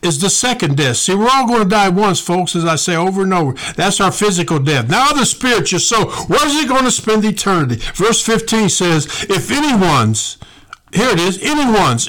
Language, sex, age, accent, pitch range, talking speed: English, male, 60-79, American, 130-195 Hz, 210 wpm